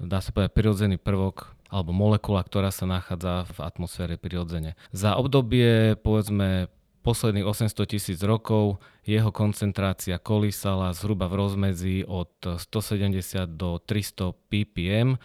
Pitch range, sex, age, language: 90-105 Hz, male, 30-49, Slovak